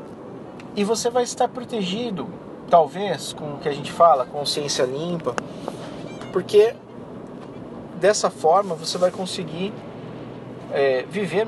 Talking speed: 110 wpm